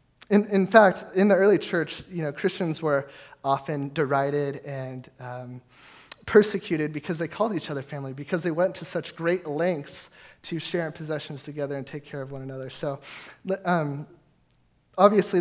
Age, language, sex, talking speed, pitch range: 20-39, English, male, 165 wpm, 145-175 Hz